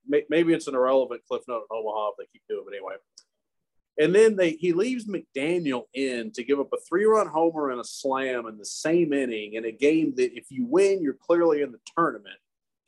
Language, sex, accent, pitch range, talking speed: English, male, American, 125-185 Hz, 220 wpm